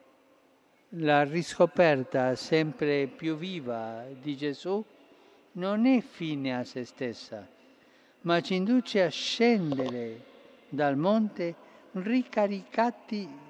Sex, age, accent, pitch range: male, 50-69, native, 145-190 Hz